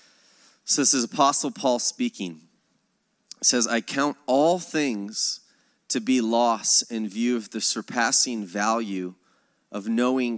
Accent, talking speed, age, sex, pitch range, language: American, 135 wpm, 20-39, male, 105-120 Hz, English